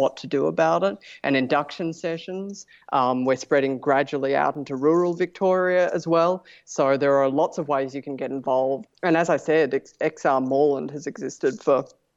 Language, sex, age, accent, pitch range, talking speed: English, female, 30-49, Australian, 135-155 Hz, 185 wpm